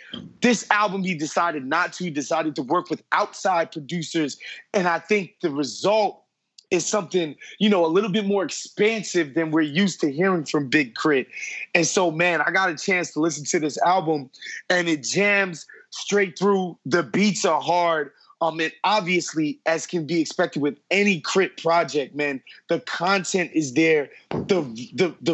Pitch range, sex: 155-190 Hz, male